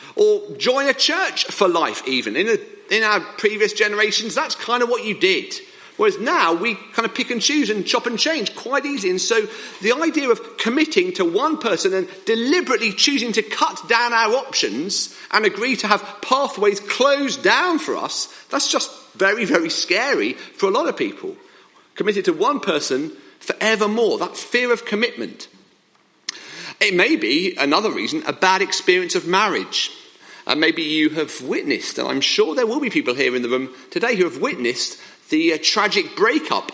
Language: English